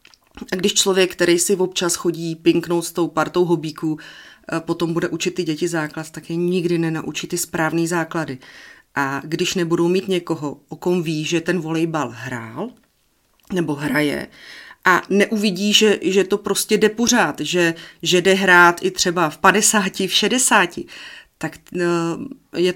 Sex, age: female, 30-49